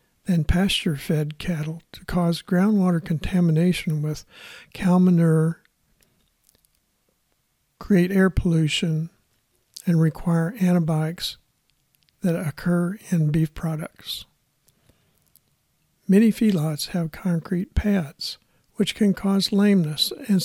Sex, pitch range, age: male, 160-190 Hz, 60-79